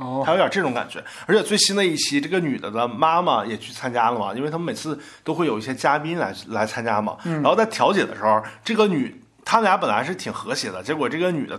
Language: Chinese